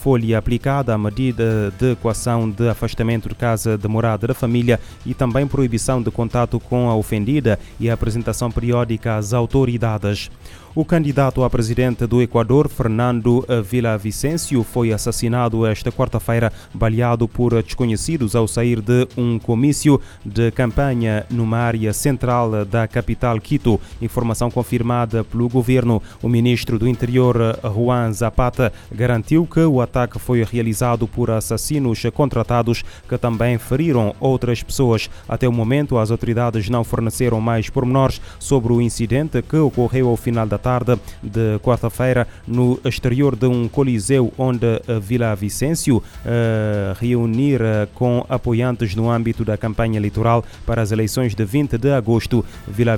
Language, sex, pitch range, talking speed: Portuguese, male, 115-125 Hz, 145 wpm